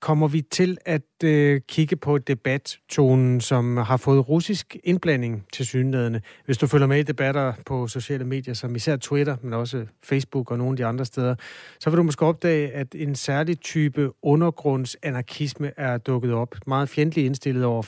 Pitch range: 125-150 Hz